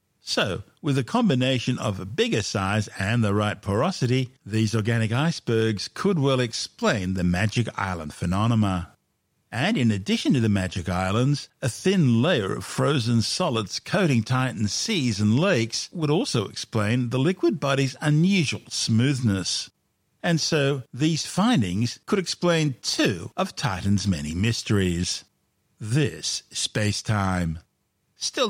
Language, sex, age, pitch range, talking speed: English, male, 50-69, 105-140 Hz, 135 wpm